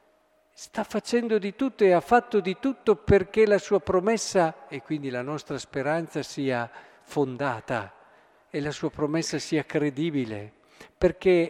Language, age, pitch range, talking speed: Italian, 50-69, 130-170 Hz, 140 wpm